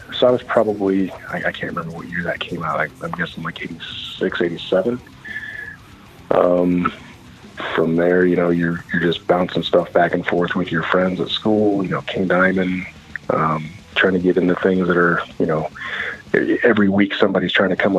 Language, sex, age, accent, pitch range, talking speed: English, male, 30-49, American, 85-100 Hz, 185 wpm